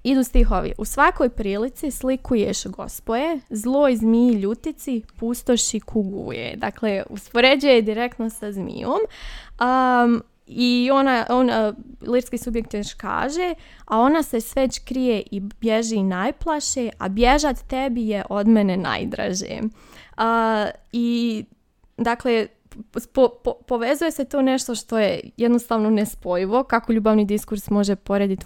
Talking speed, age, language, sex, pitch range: 120 wpm, 20-39, Croatian, female, 215-260 Hz